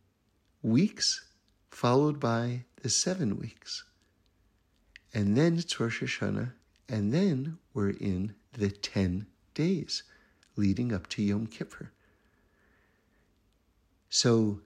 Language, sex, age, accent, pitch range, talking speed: English, male, 60-79, American, 100-140 Hz, 100 wpm